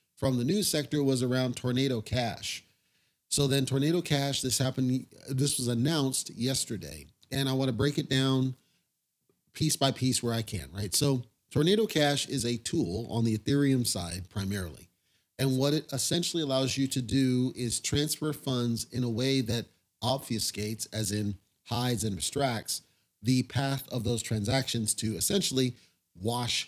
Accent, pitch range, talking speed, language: American, 115-140 Hz, 160 wpm, English